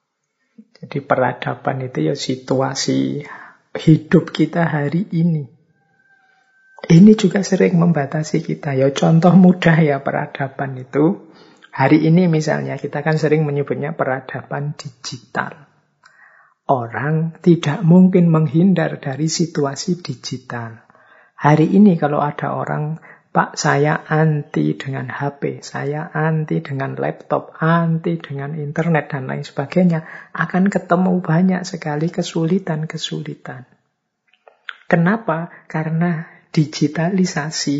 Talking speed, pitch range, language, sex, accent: 100 wpm, 145-175 Hz, Indonesian, male, native